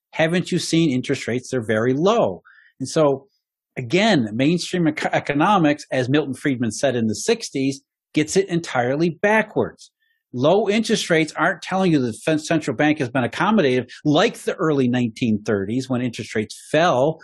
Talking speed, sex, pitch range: 155 wpm, male, 130-175 Hz